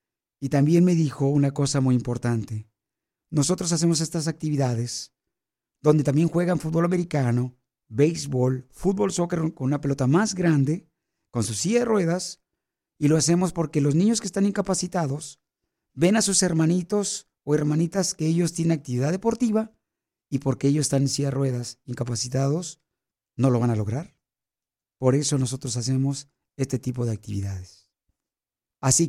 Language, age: Spanish, 50-69